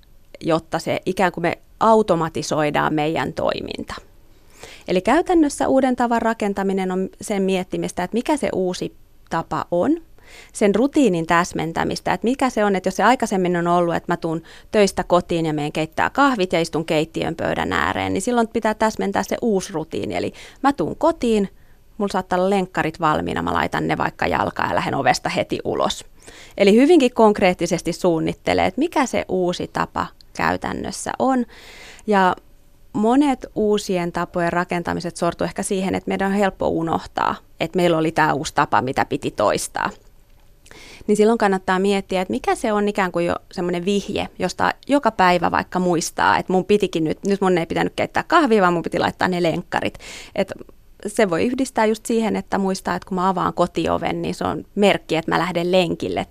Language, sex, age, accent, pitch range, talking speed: Finnish, female, 30-49, native, 170-215 Hz, 170 wpm